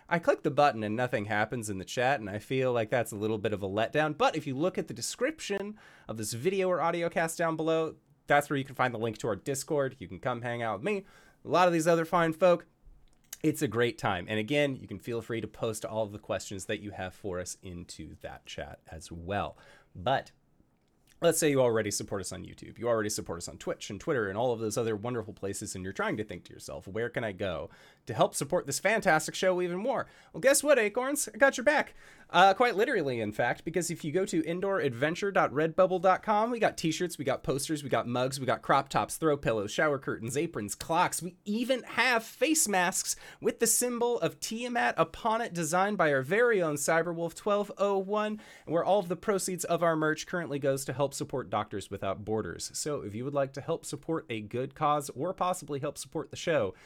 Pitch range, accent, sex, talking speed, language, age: 110-180 Hz, American, male, 230 wpm, English, 30-49